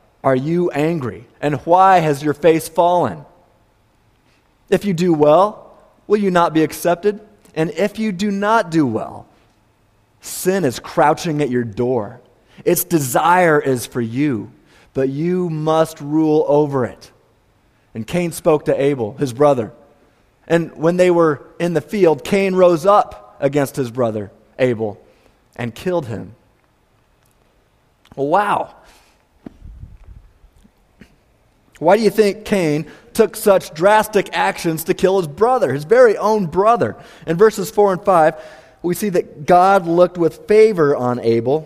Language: English